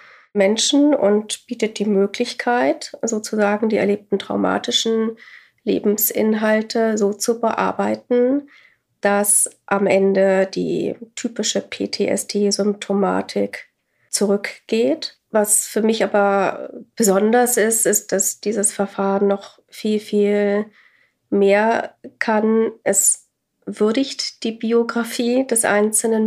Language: German